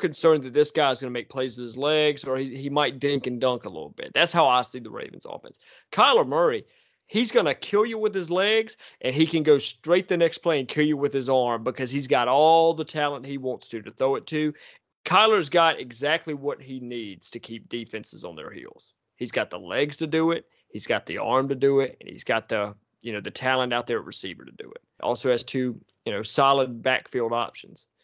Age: 30-49